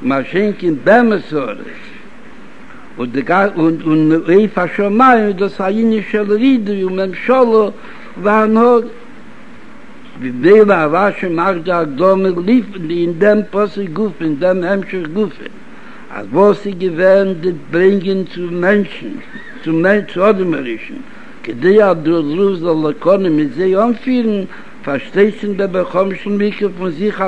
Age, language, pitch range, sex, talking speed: 60-79, Hebrew, 165-215 Hz, male, 95 wpm